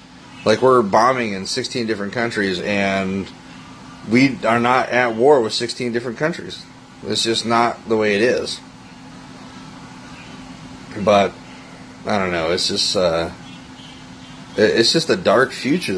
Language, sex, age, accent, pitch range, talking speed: English, male, 30-49, American, 100-125 Hz, 135 wpm